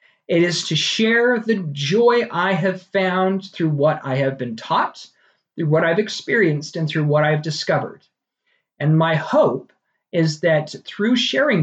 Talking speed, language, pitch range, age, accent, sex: 160 wpm, English, 155-200 Hz, 40-59, American, male